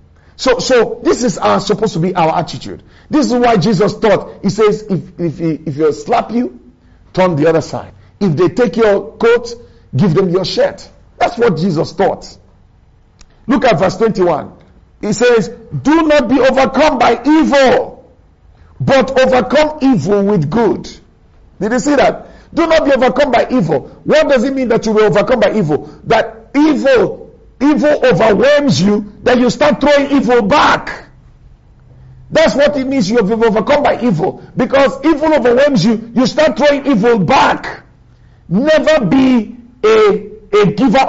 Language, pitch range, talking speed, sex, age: English, 205-275 Hz, 165 wpm, male, 50-69